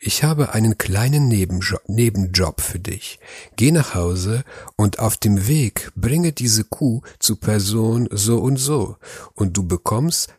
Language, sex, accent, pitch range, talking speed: German, male, German, 95-120 Hz, 150 wpm